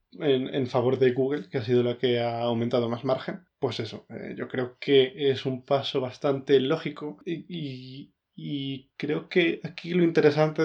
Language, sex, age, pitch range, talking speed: Spanish, male, 20-39, 130-145 Hz, 185 wpm